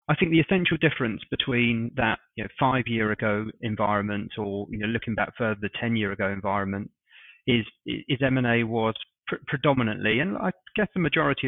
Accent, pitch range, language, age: British, 110-135 Hz, English, 30-49